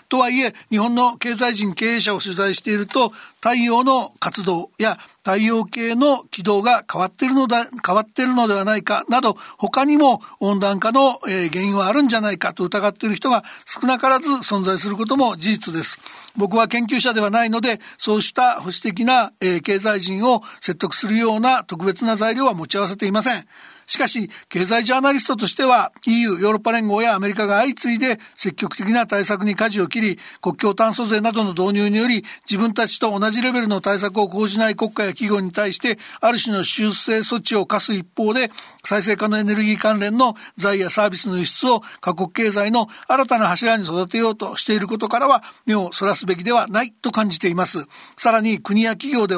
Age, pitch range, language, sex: 60-79, 200-240 Hz, Japanese, male